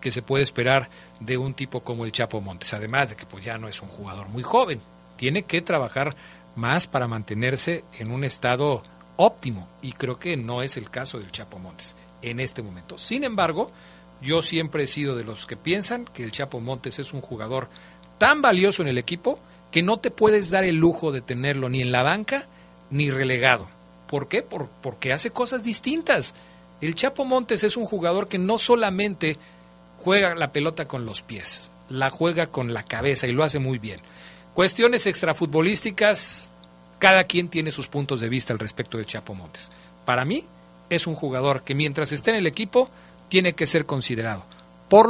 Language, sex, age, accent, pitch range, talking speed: Spanish, male, 40-59, Mexican, 110-175 Hz, 190 wpm